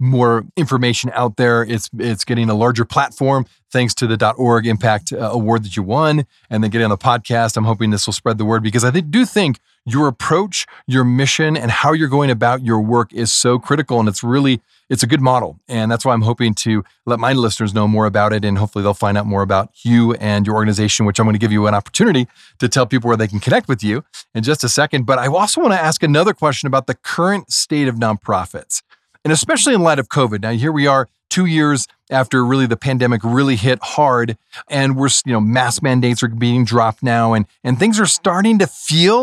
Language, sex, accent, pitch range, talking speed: English, male, American, 115-145 Hz, 230 wpm